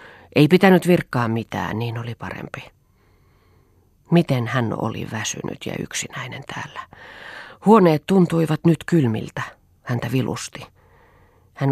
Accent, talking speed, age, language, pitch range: native, 110 wpm, 40-59, Finnish, 105-140 Hz